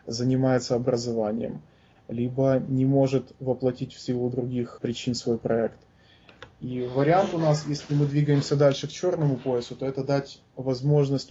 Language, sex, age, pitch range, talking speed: Russian, male, 20-39, 120-130 Hz, 145 wpm